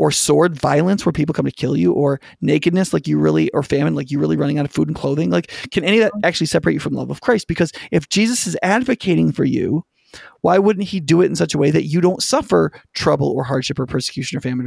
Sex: male